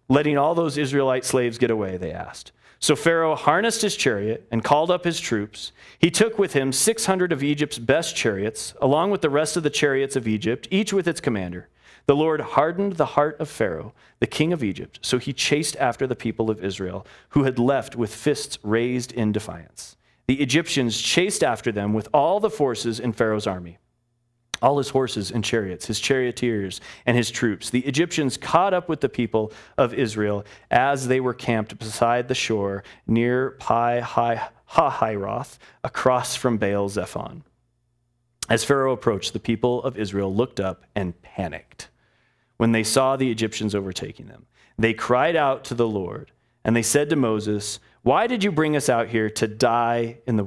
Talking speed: 180 wpm